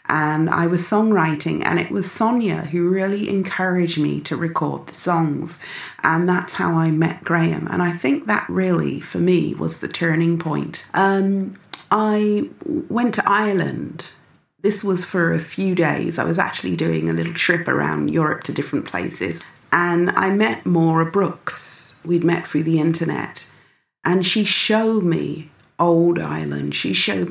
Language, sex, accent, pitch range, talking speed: English, female, British, 155-195 Hz, 165 wpm